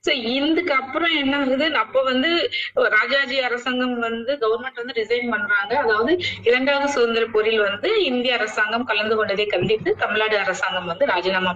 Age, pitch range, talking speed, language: 30-49, 215-315 Hz, 145 wpm, Tamil